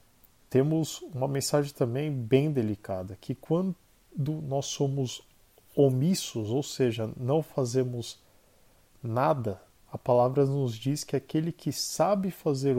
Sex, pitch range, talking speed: male, 125-155 Hz, 115 wpm